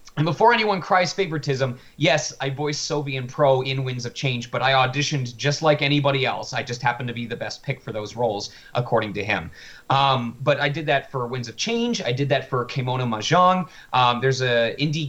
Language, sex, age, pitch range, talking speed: English, male, 30-49, 125-150 Hz, 215 wpm